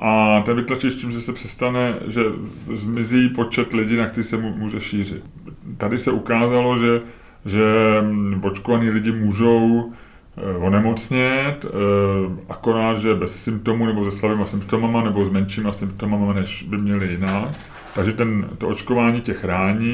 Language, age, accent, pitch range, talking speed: Czech, 30-49, native, 100-120 Hz, 145 wpm